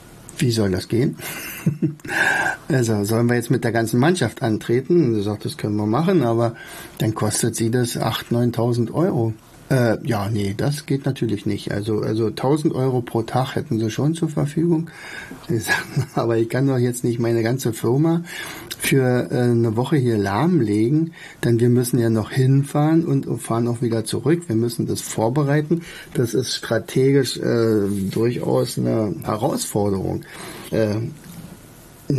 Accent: German